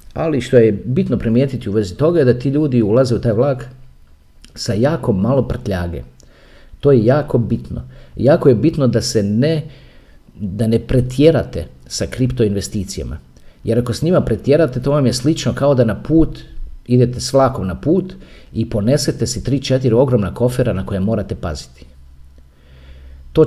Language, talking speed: Croatian, 165 wpm